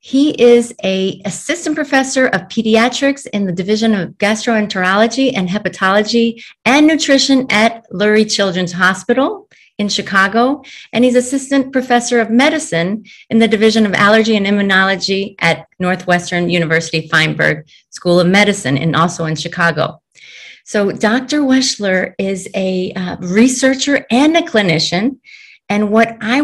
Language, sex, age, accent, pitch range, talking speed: English, female, 30-49, American, 190-250 Hz, 135 wpm